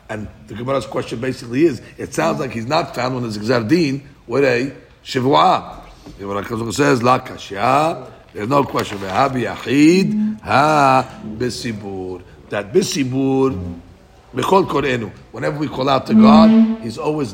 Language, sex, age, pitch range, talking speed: English, male, 60-79, 115-140 Hz, 120 wpm